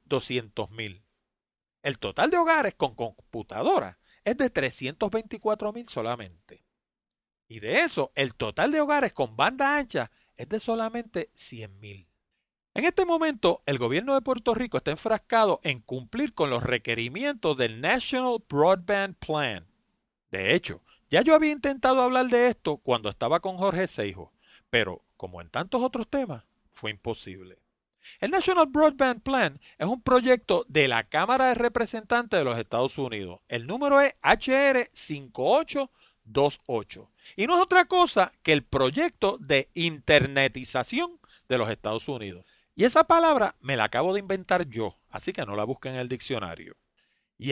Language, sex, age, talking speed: Spanish, male, 40-59, 150 wpm